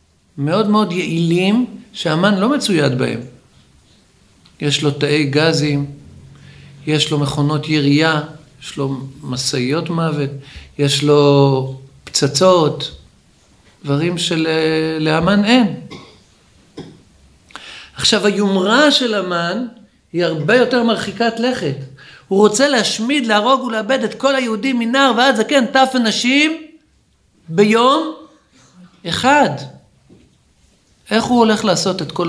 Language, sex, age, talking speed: Hebrew, male, 50-69, 100 wpm